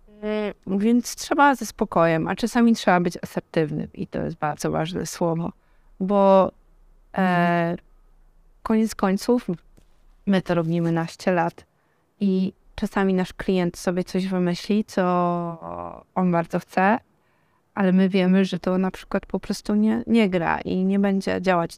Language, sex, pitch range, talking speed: Polish, female, 175-210 Hz, 140 wpm